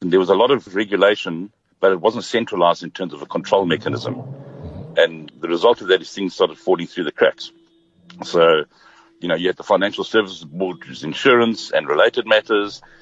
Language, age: English, 60-79